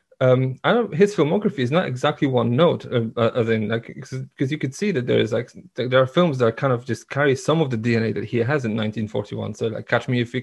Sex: male